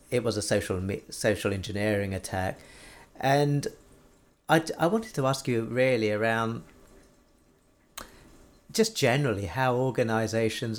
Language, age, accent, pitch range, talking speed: English, 40-59, British, 105-145 Hz, 110 wpm